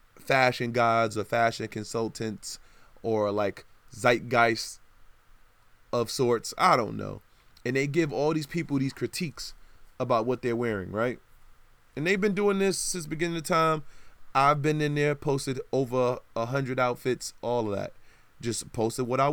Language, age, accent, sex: English, 20-39, American, male